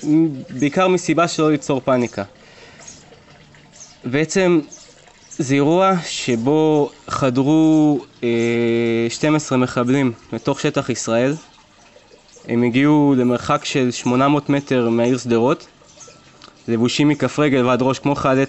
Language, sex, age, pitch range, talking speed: Hebrew, male, 20-39, 125-150 Hz, 100 wpm